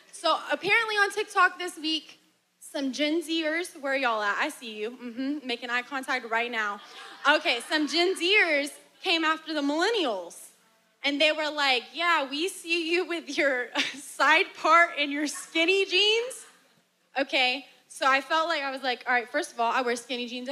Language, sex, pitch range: English, female, 235-320 Hz